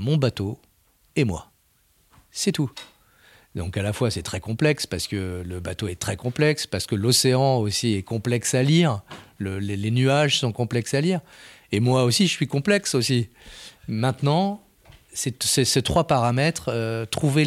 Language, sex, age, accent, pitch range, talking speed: French, male, 40-59, French, 105-135 Hz, 175 wpm